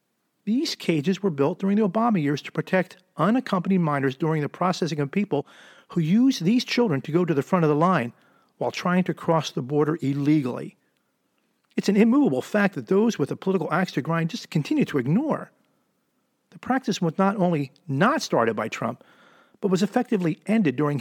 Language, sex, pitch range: English, male, 160-230 Hz